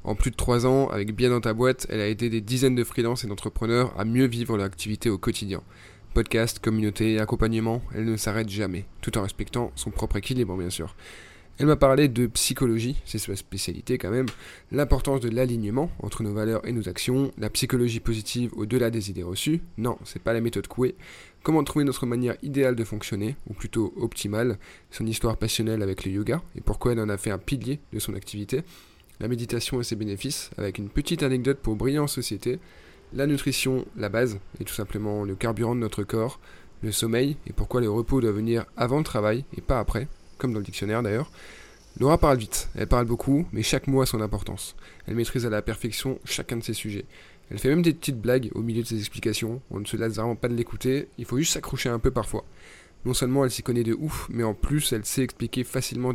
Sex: male